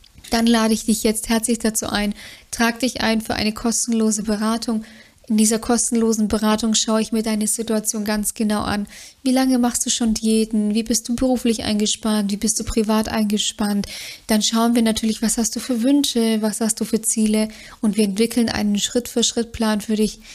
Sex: female